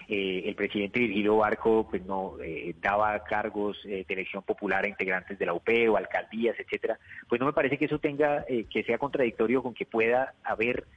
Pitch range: 110-145 Hz